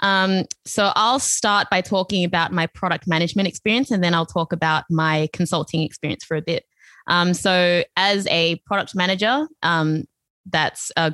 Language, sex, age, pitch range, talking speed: English, female, 20-39, 165-185 Hz, 165 wpm